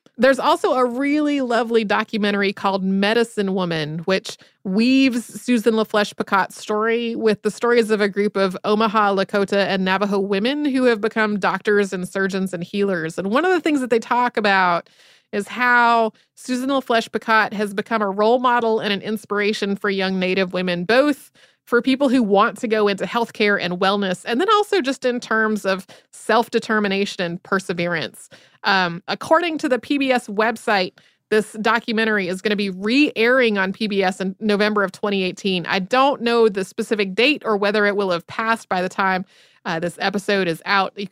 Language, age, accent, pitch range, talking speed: English, 30-49, American, 195-235 Hz, 175 wpm